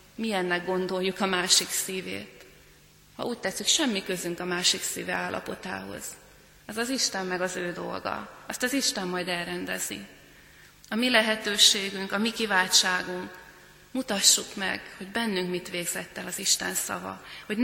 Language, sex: Hungarian, female